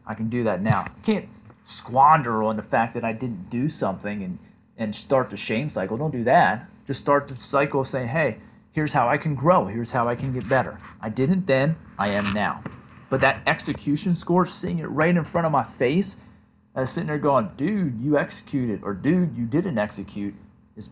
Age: 30-49